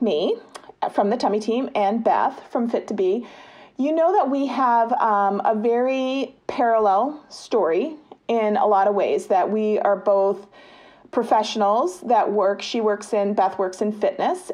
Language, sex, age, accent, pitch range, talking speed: English, female, 40-59, American, 195-245 Hz, 155 wpm